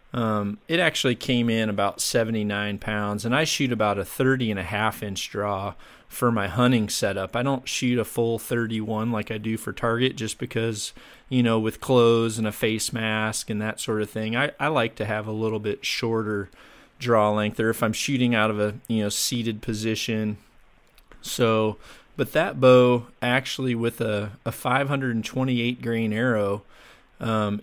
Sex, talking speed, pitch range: male, 180 wpm, 110-125 Hz